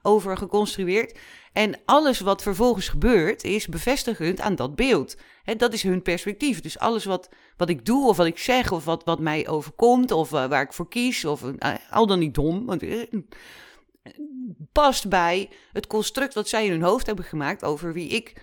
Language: Dutch